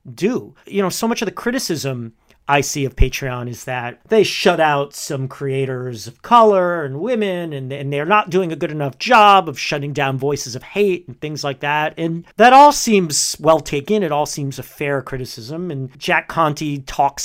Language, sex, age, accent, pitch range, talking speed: English, male, 40-59, American, 135-180 Hz, 200 wpm